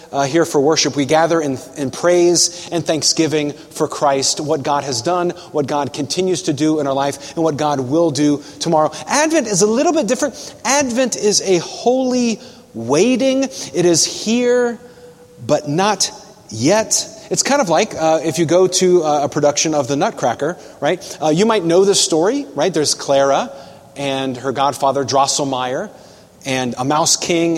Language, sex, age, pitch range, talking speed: English, male, 30-49, 145-200 Hz, 175 wpm